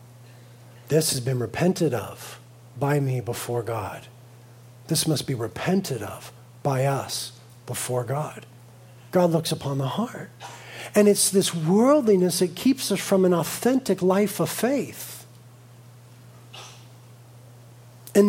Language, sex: English, male